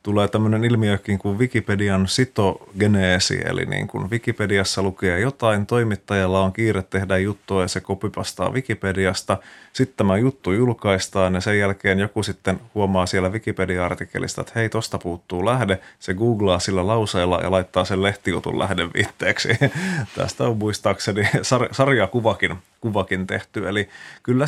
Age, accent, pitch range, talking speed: 30-49, native, 95-120 Hz, 140 wpm